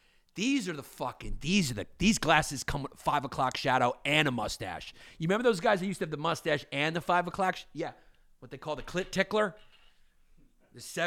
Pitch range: 115-150 Hz